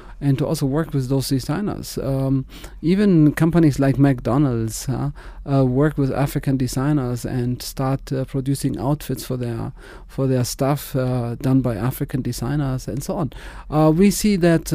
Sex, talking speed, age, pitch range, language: male, 165 wpm, 40-59, 135-155 Hz, English